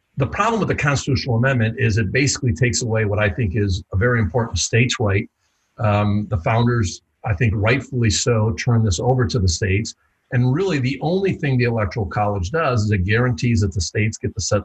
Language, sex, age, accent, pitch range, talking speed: English, male, 50-69, American, 100-130 Hz, 210 wpm